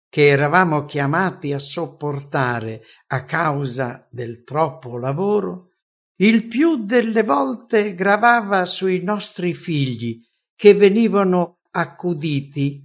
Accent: Italian